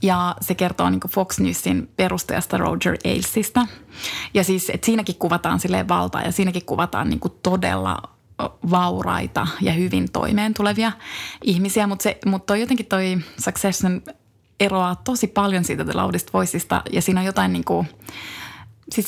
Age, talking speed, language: 20-39, 140 wpm, Finnish